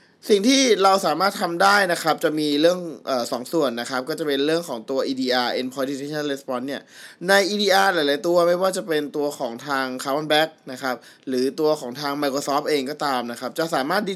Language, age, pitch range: Thai, 20-39, 135-180 Hz